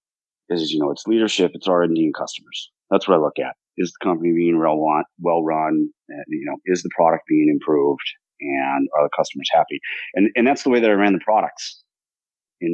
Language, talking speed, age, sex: English, 215 wpm, 30-49, male